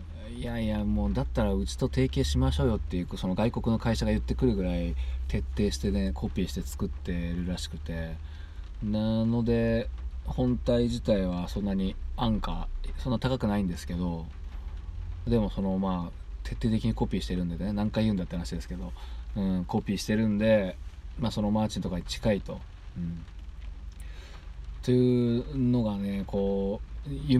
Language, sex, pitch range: Japanese, male, 80-115 Hz